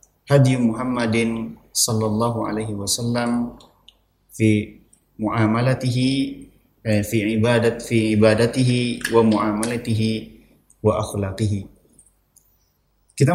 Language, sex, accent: Indonesian, male, native